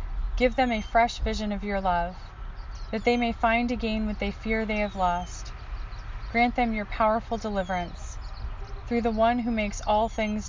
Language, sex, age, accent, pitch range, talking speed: English, female, 30-49, American, 180-225 Hz, 175 wpm